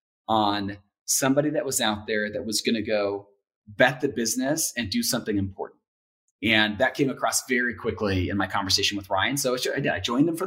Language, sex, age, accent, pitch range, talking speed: English, male, 30-49, American, 105-135 Hz, 195 wpm